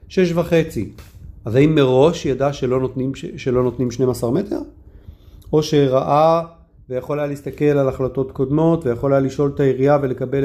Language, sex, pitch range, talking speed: Hebrew, male, 120-165 Hz, 150 wpm